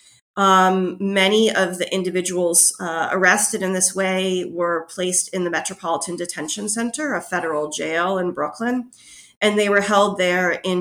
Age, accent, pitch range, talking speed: 30-49, American, 175-220 Hz, 155 wpm